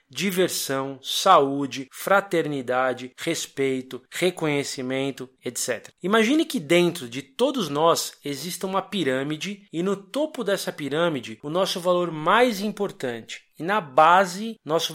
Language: Portuguese